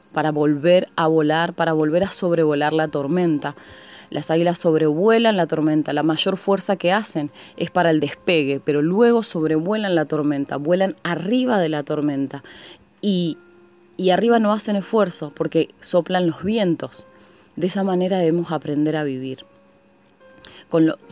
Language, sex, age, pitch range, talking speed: Spanish, female, 20-39, 160-185 Hz, 150 wpm